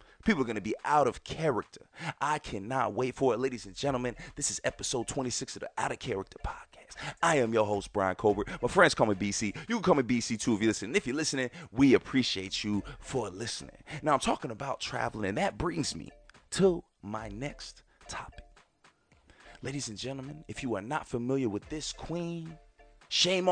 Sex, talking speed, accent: male, 200 wpm, American